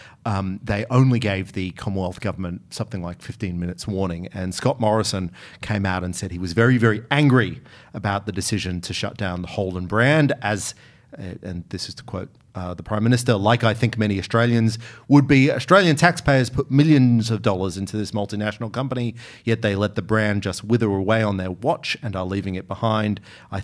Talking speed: 195 wpm